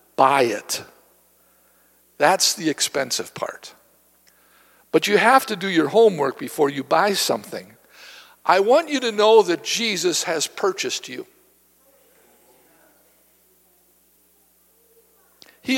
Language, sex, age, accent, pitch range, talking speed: English, male, 60-79, American, 175-255 Hz, 105 wpm